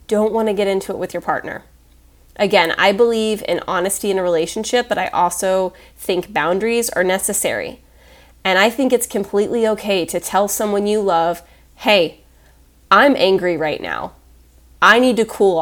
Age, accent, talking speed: 30-49, American, 165 wpm